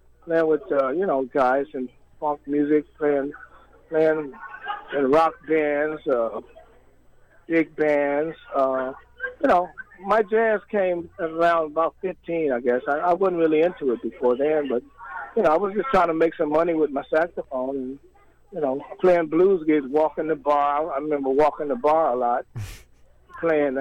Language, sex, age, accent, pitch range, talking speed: English, male, 50-69, American, 135-165 Hz, 170 wpm